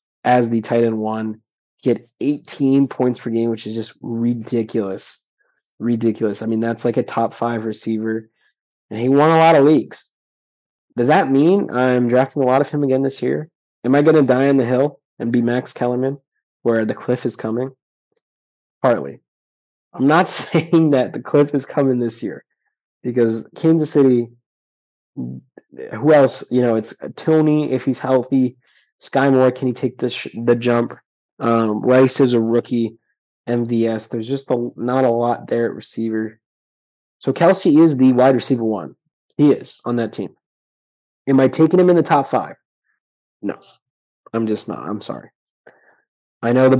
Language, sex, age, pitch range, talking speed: English, male, 20-39, 115-130 Hz, 170 wpm